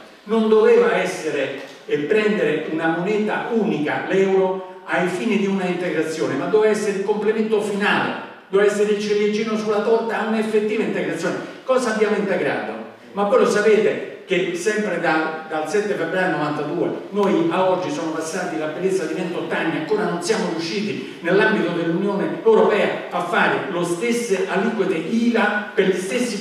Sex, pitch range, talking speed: male, 185-220 Hz, 155 wpm